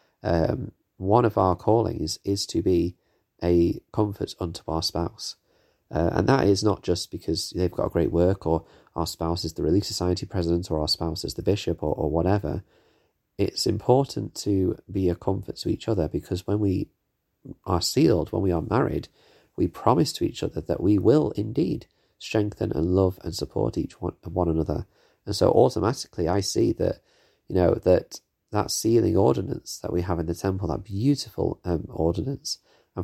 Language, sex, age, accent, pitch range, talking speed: English, male, 30-49, British, 85-105 Hz, 185 wpm